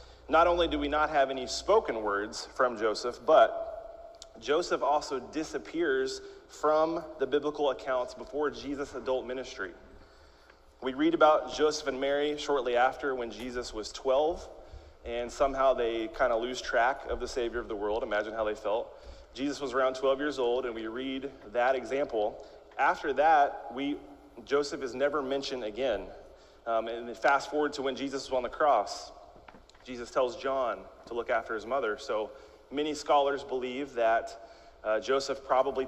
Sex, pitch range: male, 120-145 Hz